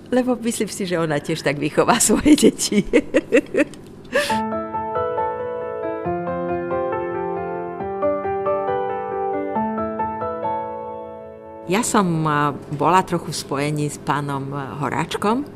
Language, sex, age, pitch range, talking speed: Czech, female, 50-69, 140-195 Hz, 70 wpm